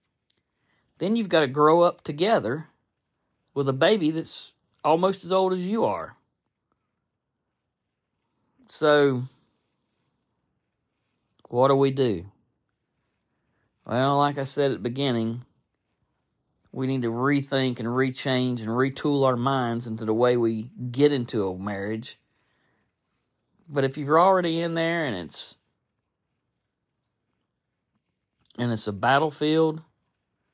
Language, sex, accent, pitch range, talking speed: English, male, American, 120-160 Hz, 115 wpm